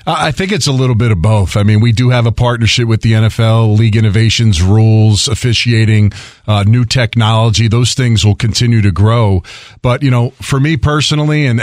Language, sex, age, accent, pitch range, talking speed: English, male, 40-59, American, 110-130 Hz, 195 wpm